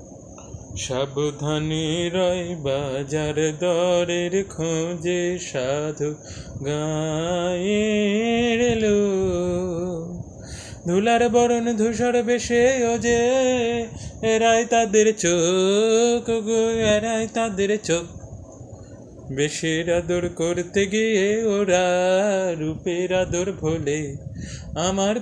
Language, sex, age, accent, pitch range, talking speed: Bengali, male, 30-49, native, 165-225 Hz, 65 wpm